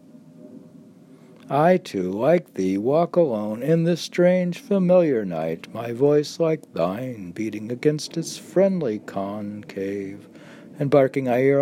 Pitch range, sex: 100-145 Hz, male